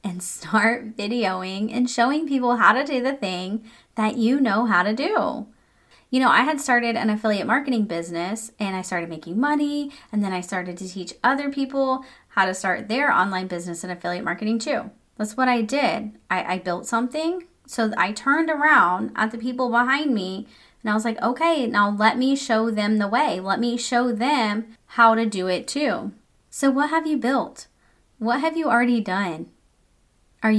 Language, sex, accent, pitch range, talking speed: English, female, American, 195-255 Hz, 190 wpm